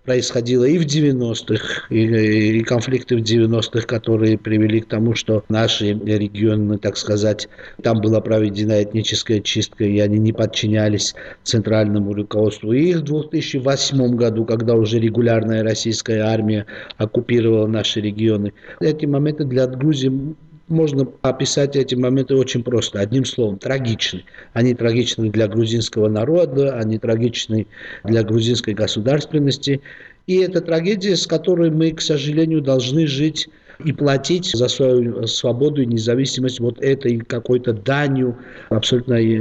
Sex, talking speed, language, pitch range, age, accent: male, 130 wpm, Russian, 110-140 Hz, 50-69, native